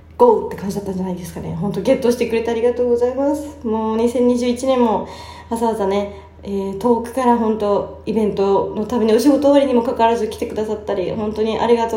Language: Japanese